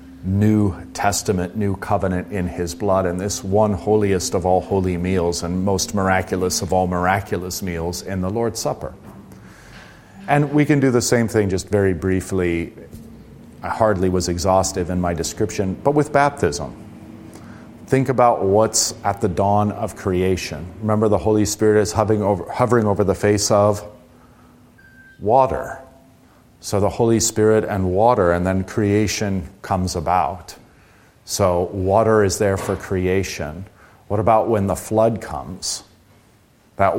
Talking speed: 150 wpm